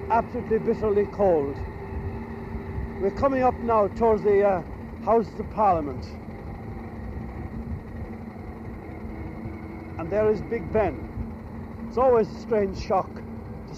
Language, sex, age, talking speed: English, male, 60-79, 105 wpm